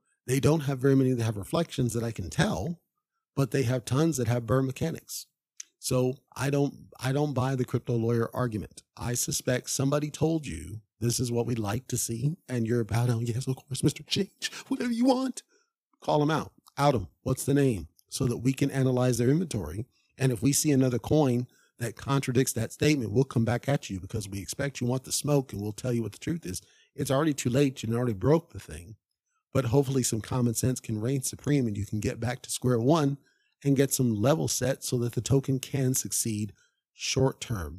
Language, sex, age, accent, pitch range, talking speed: English, male, 50-69, American, 115-140 Hz, 220 wpm